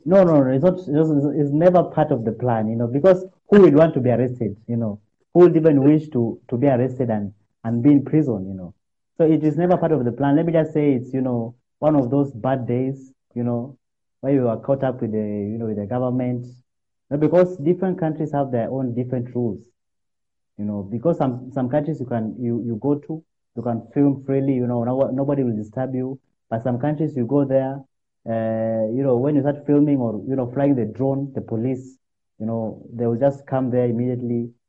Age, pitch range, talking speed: 30-49, 115-145 Hz, 225 wpm